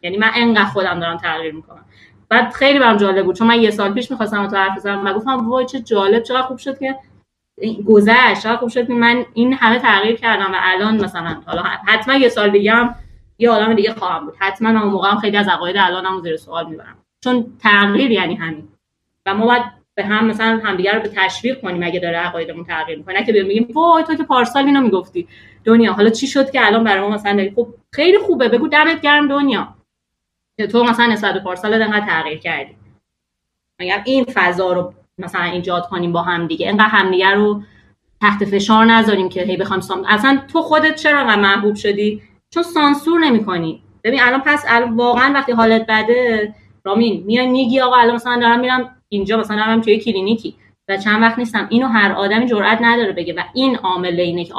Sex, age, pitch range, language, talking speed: female, 30-49, 190-240 Hz, Persian, 175 wpm